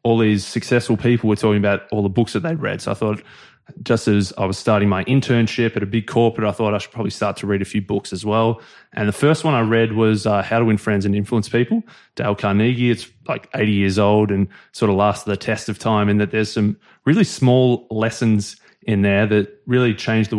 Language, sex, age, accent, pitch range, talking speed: English, male, 20-39, Australian, 105-120 Hz, 245 wpm